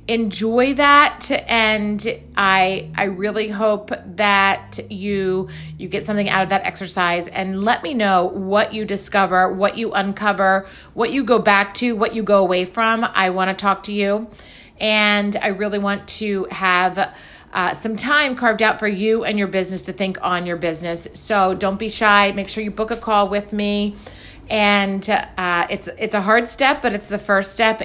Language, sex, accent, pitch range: English, female, American, 190-215 Hz